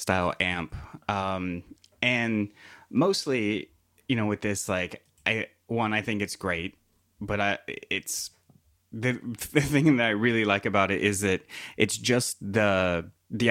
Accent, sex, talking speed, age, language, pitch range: American, male, 150 wpm, 30-49, English, 90-110 Hz